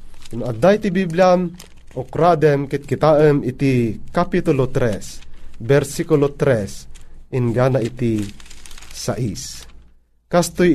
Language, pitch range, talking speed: Filipino, 105-160 Hz, 90 wpm